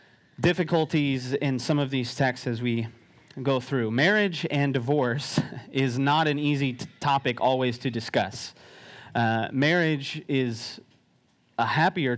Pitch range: 125-150 Hz